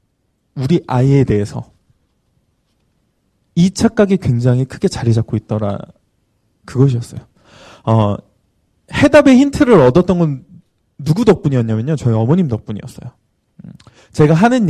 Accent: native